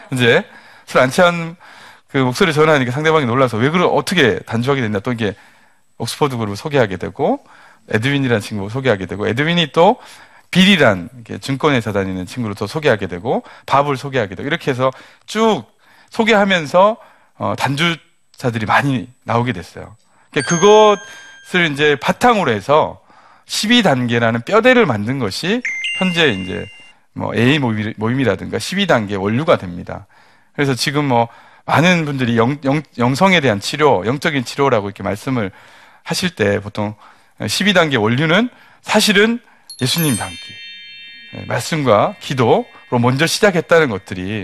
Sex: male